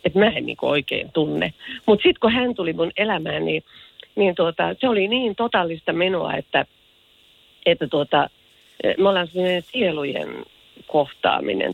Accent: native